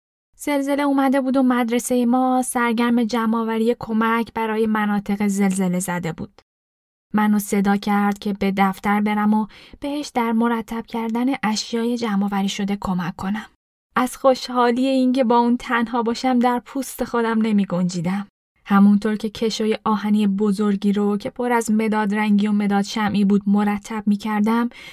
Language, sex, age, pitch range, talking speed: Persian, female, 10-29, 200-245 Hz, 145 wpm